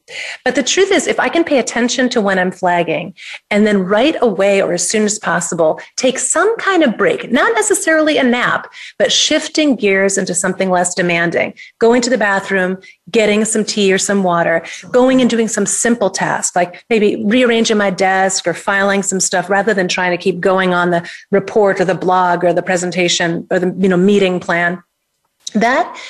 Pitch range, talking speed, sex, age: 185-240 Hz, 190 wpm, female, 30-49